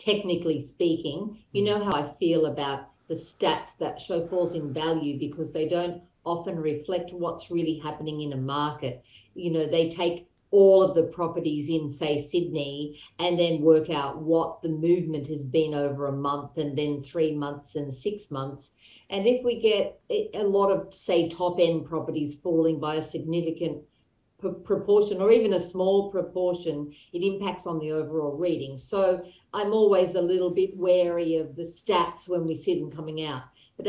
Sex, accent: female, Australian